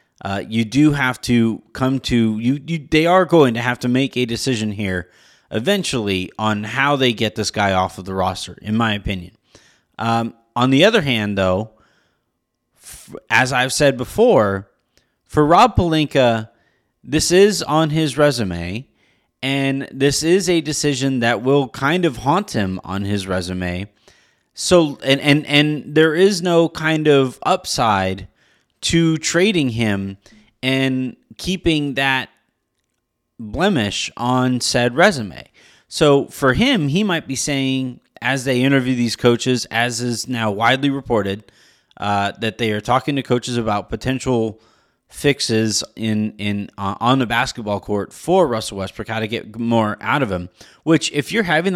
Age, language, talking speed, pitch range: 30-49, English, 155 wpm, 110-145 Hz